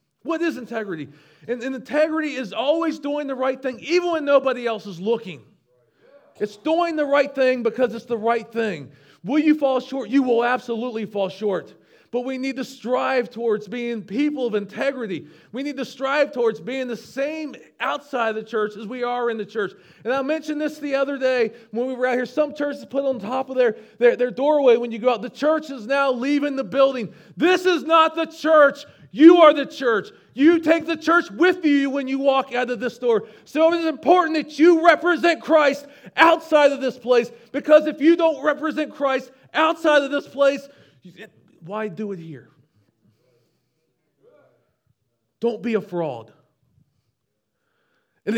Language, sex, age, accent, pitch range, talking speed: English, male, 40-59, American, 210-290 Hz, 185 wpm